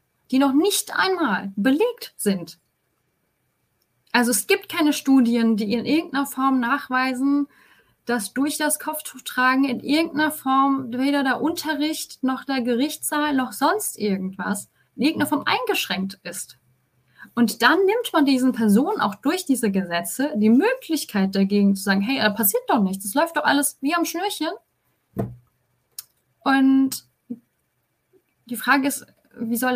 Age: 20-39